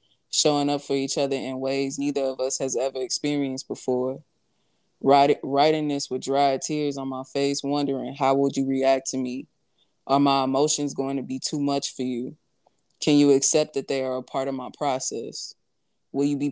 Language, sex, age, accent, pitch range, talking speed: English, female, 20-39, American, 130-145 Hz, 195 wpm